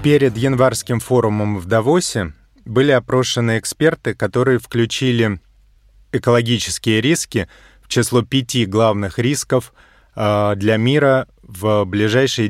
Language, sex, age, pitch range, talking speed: Russian, male, 30-49, 110-130 Hz, 100 wpm